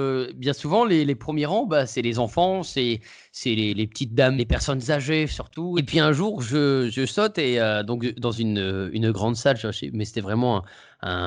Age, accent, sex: 20-39, French, male